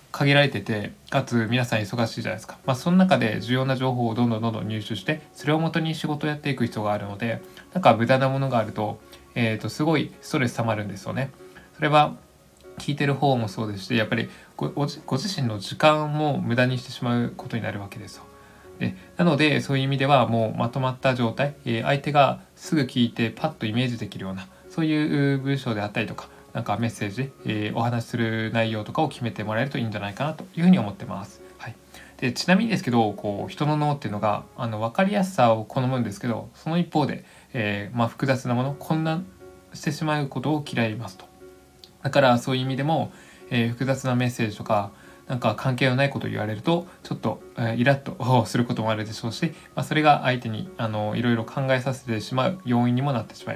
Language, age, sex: Japanese, 20-39, male